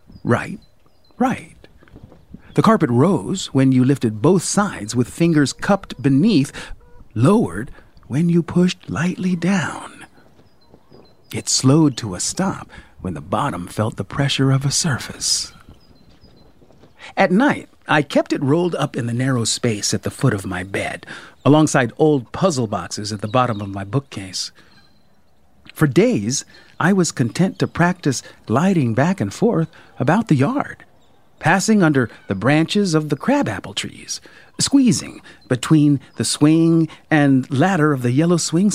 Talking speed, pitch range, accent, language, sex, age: 145 wpm, 120-160 Hz, American, English, male, 50-69